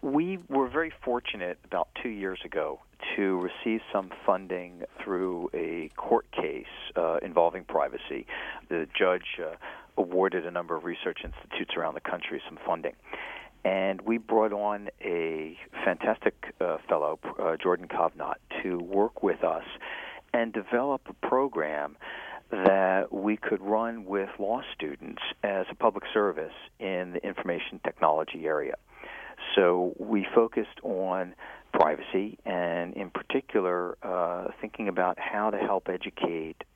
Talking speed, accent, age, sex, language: 135 wpm, American, 50-69, male, English